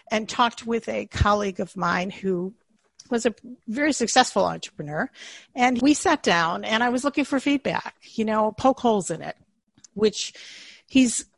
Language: English